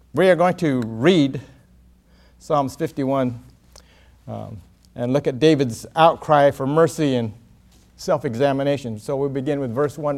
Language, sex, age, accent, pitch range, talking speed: English, male, 50-69, American, 120-185 Hz, 140 wpm